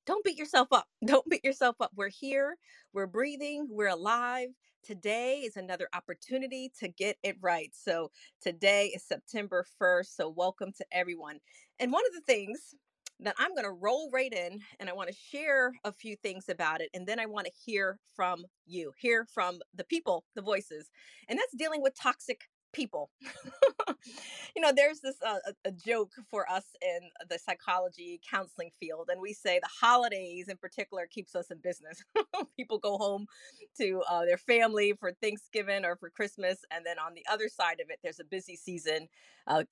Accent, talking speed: American, 185 wpm